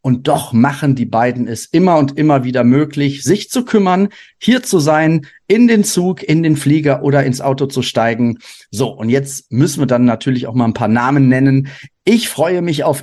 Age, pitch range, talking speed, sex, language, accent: 40-59, 125-150 Hz, 205 wpm, male, German, German